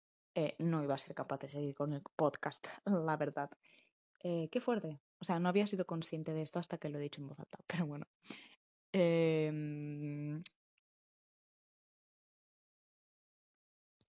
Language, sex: Spanish, female